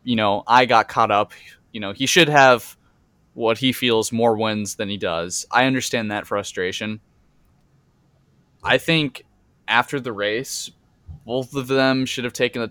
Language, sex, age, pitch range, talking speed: English, male, 20-39, 110-125 Hz, 165 wpm